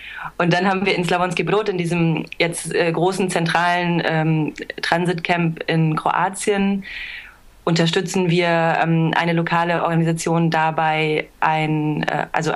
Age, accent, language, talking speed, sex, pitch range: 30-49, German, German, 110 wpm, female, 160-185 Hz